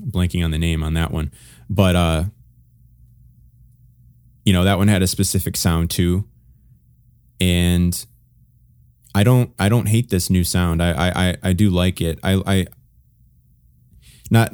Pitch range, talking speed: 85-110 Hz, 150 wpm